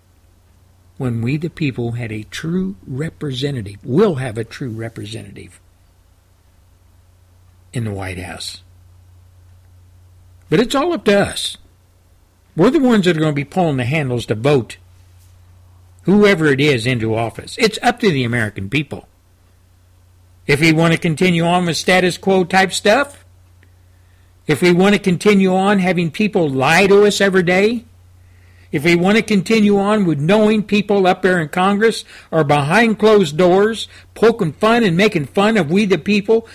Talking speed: 160 wpm